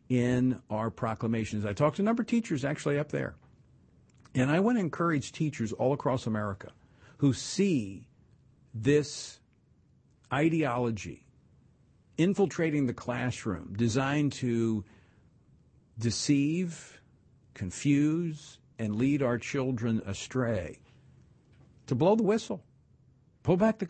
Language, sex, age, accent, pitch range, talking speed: English, male, 50-69, American, 120-150 Hz, 115 wpm